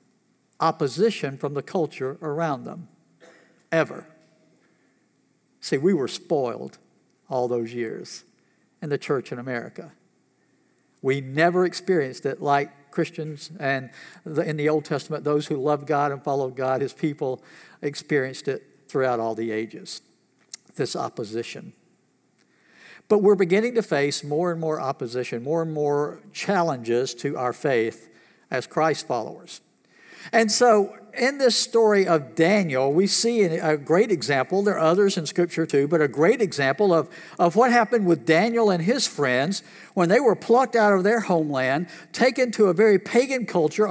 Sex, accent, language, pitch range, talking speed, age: male, American, English, 150-215 Hz, 155 wpm, 60-79